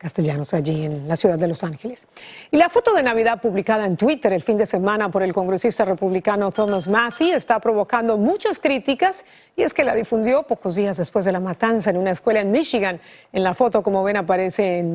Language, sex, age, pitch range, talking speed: Spanish, female, 40-59, 190-255 Hz, 210 wpm